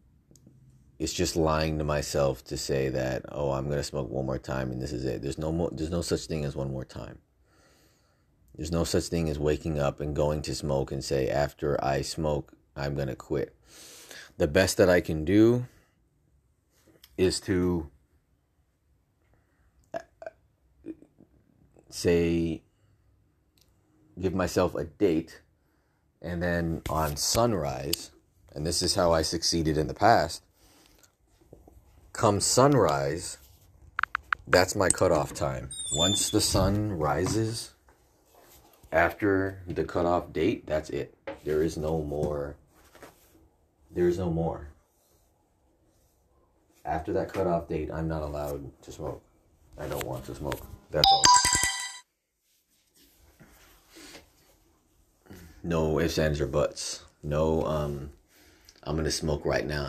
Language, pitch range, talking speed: English, 70-90 Hz, 130 wpm